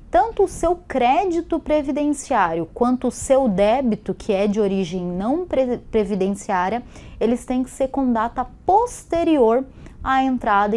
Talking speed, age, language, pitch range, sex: 135 wpm, 20-39, Portuguese, 180-245 Hz, female